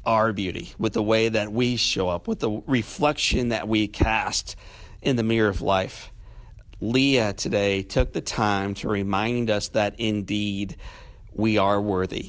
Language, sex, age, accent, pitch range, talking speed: English, male, 50-69, American, 105-125 Hz, 160 wpm